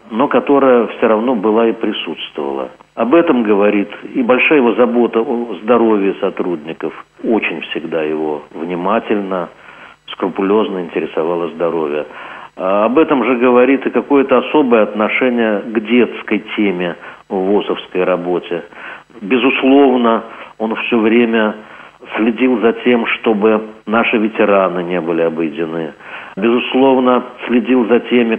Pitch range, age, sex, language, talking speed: 95-130 Hz, 50-69, male, Russian, 115 wpm